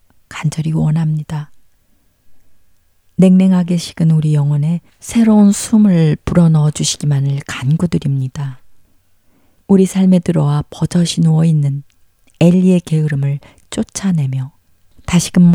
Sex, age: female, 40-59